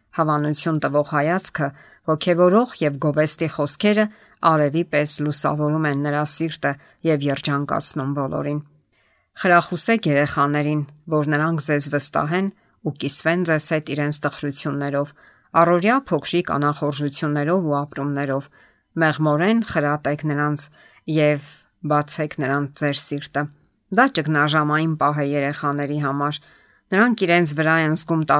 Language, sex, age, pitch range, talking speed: English, female, 50-69, 145-165 Hz, 55 wpm